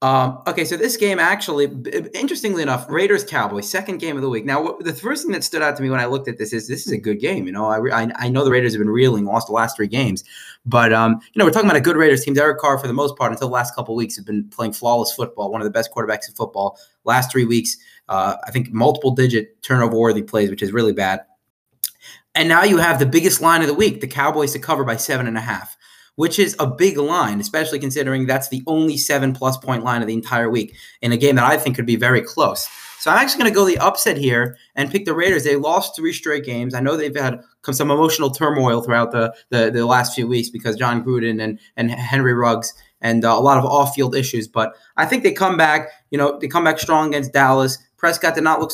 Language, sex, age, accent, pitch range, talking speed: English, male, 20-39, American, 115-150 Hz, 260 wpm